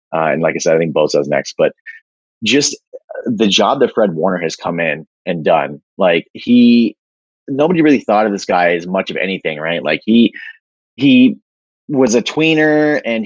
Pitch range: 90-125 Hz